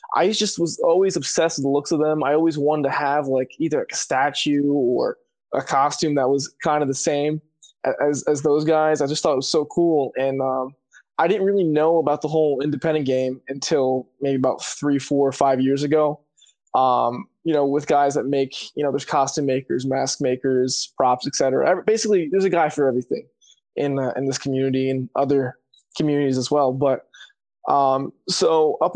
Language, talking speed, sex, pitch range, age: English, 200 wpm, male, 135-160 Hz, 20-39